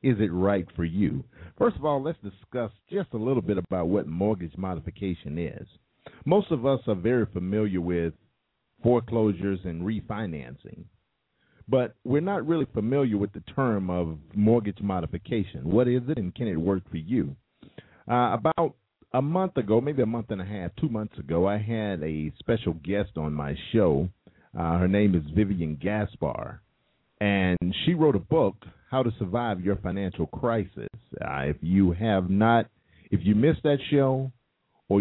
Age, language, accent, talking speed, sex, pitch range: 50-69, English, American, 170 wpm, male, 90-125 Hz